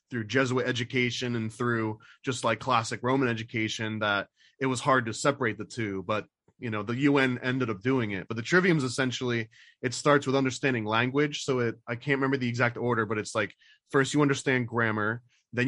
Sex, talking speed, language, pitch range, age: male, 205 wpm, English, 110-130 Hz, 20-39